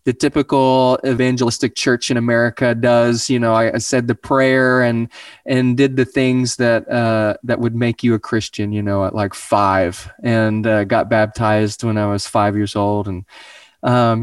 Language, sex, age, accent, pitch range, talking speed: English, male, 20-39, American, 105-125 Hz, 185 wpm